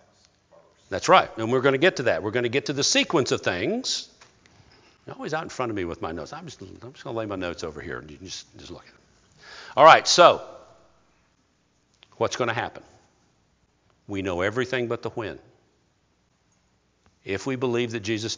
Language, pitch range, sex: English, 105-135 Hz, male